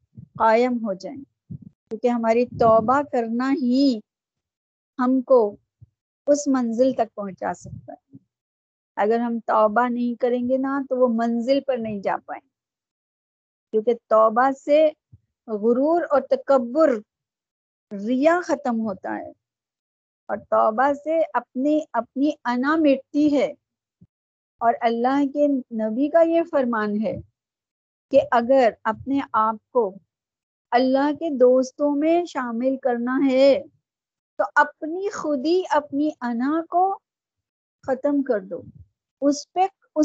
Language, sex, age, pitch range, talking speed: Urdu, female, 50-69, 220-280 Hz, 120 wpm